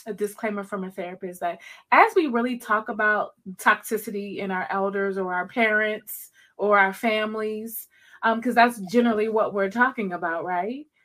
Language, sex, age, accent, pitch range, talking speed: English, female, 20-39, American, 195-250 Hz, 165 wpm